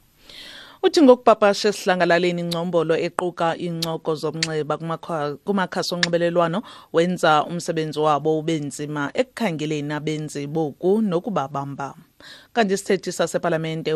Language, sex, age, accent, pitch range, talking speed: English, female, 30-49, Nigerian, 105-165 Hz, 105 wpm